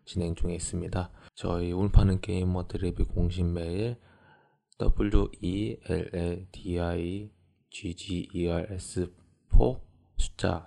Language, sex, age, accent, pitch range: Korean, male, 20-39, native, 85-100 Hz